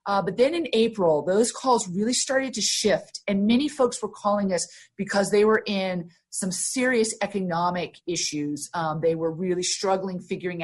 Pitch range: 180-225 Hz